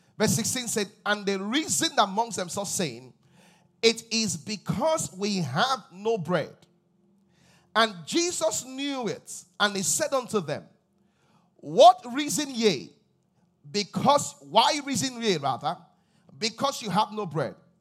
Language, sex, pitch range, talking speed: English, male, 175-240 Hz, 130 wpm